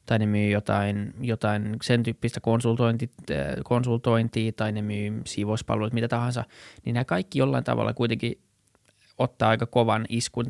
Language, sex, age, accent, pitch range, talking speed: Finnish, male, 20-39, native, 110-125 Hz, 130 wpm